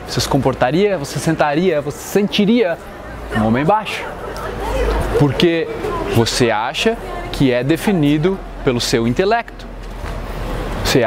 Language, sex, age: Portuguese, male, 20-39